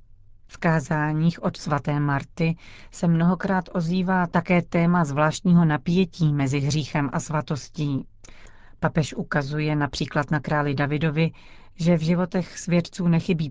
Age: 40-59